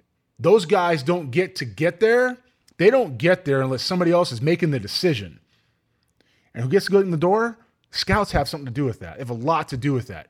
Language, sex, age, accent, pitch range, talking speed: English, male, 20-39, American, 125-180 Hz, 240 wpm